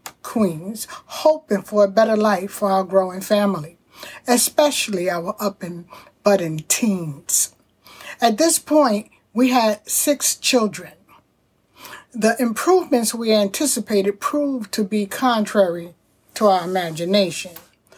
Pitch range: 190-240 Hz